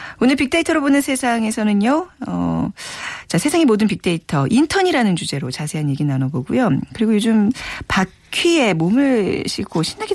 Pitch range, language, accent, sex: 165-255 Hz, Korean, native, female